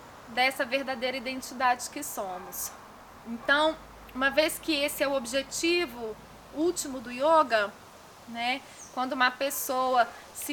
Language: Portuguese